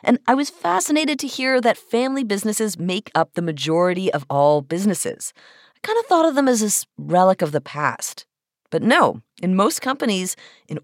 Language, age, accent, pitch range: English, 30-49, American, 170-255 Hz